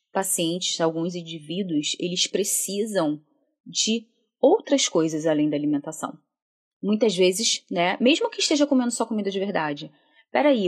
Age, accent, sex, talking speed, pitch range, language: 20-39, Brazilian, female, 130 wpm, 170-250 Hz, Portuguese